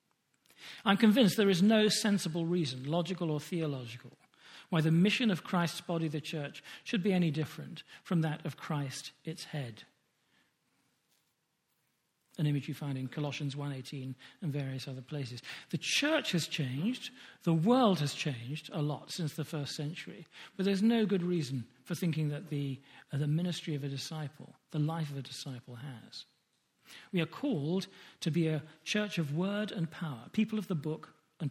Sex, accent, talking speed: male, British, 170 wpm